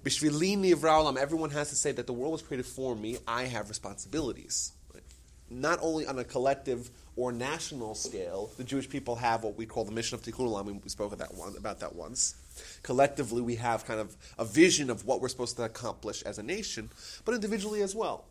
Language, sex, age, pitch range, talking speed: English, male, 30-49, 105-145 Hz, 195 wpm